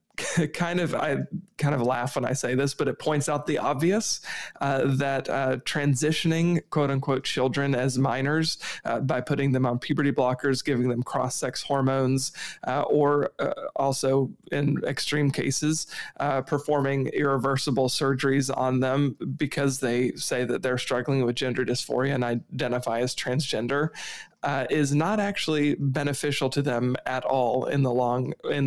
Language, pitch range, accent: English, 130-145 Hz, American